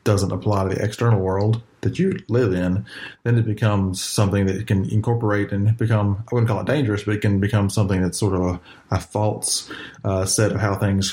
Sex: male